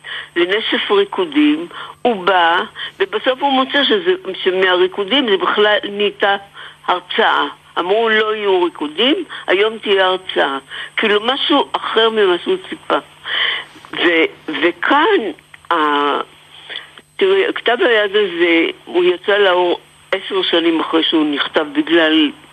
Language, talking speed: Hebrew, 110 wpm